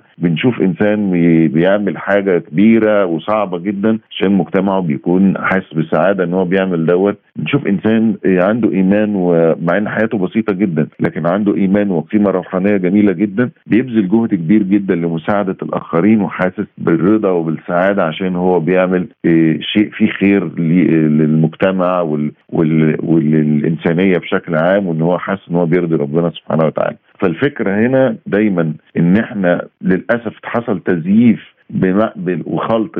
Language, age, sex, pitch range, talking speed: Arabic, 50-69, male, 80-100 Hz, 125 wpm